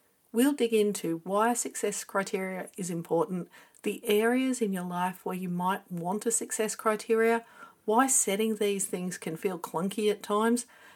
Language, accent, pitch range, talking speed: English, Australian, 180-225 Hz, 160 wpm